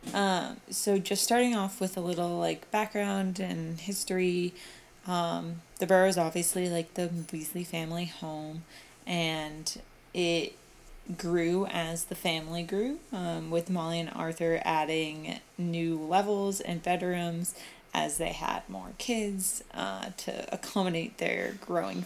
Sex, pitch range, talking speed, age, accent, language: female, 175-205 Hz, 135 wpm, 20-39, American, English